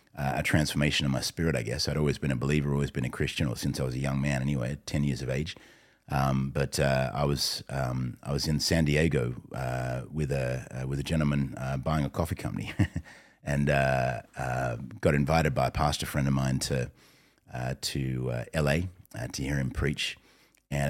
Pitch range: 65-75 Hz